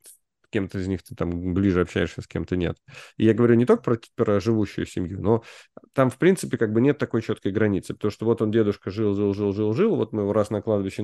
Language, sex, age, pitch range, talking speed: Russian, male, 30-49, 100-125 Hz, 225 wpm